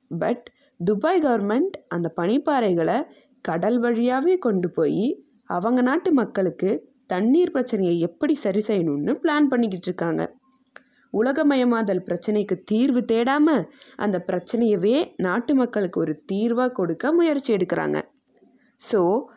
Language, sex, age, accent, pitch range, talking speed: Tamil, female, 20-39, native, 190-260 Hz, 105 wpm